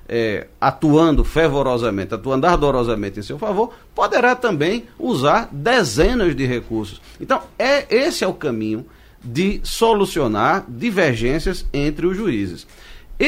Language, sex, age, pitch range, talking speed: Portuguese, male, 40-59, 115-185 Hz, 110 wpm